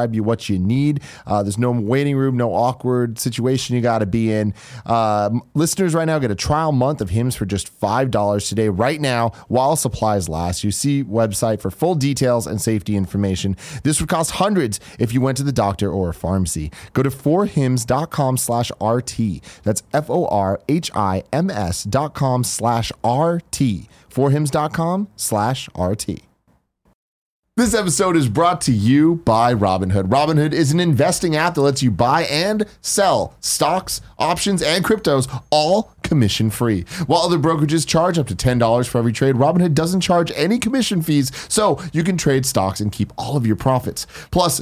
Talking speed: 175 wpm